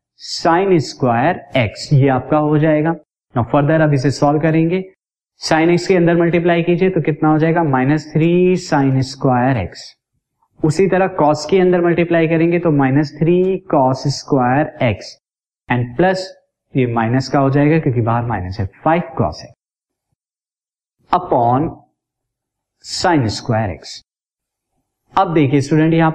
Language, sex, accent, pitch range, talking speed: Hindi, male, native, 135-170 Hz, 140 wpm